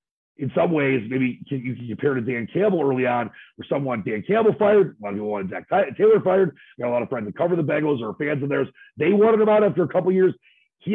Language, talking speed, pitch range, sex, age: English, 270 wpm, 115-145 Hz, male, 40-59